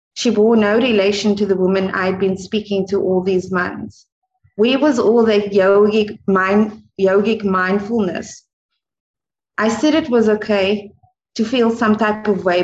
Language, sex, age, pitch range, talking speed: English, female, 30-49, 190-215 Hz, 155 wpm